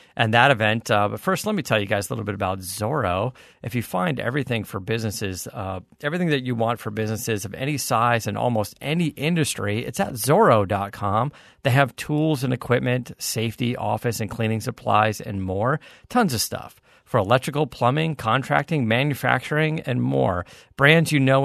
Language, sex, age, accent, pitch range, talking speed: English, male, 40-59, American, 110-140 Hz, 180 wpm